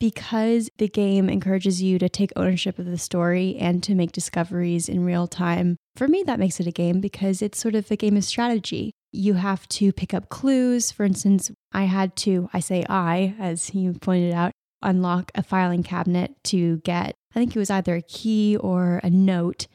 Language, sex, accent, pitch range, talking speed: English, female, American, 180-205 Hz, 205 wpm